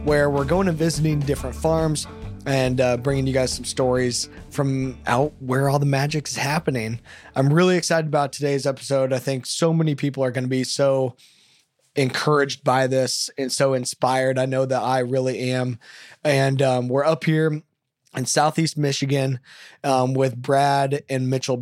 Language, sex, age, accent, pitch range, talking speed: English, male, 20-39, American, 125-145 Hz, 175 wpm